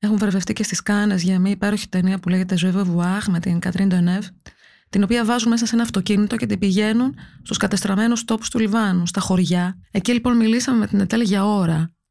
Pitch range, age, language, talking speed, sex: 185-225 Hz, 20-39, Greek, 205 wpm, female